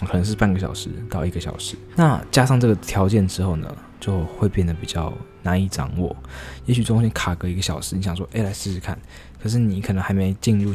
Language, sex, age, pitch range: Chinese, male, 20-39, 85-105 Hz